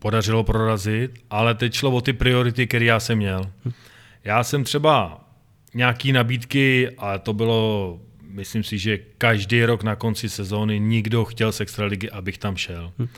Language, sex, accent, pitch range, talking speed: Czech, male, native, 110-130 Hz, 160 wpm